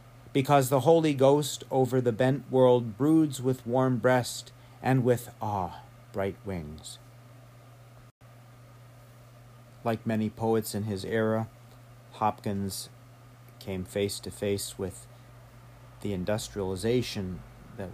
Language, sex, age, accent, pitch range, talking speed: English, male, 40-59, American, 100-120 Hz, 105 wpm